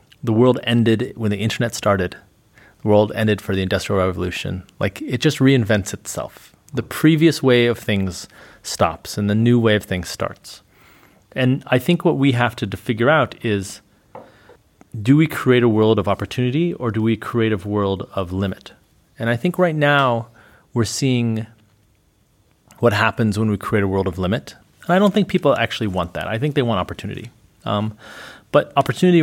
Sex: male